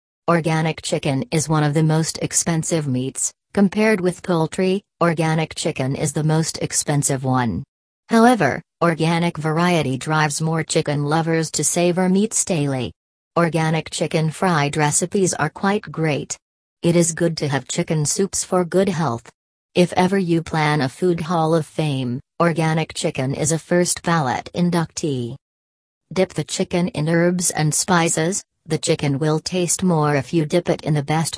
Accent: American